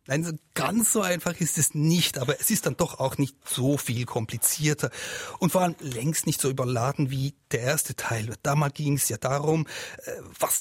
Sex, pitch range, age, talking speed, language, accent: male, 125-155 Hz, 30-49, 190 wpm, German, German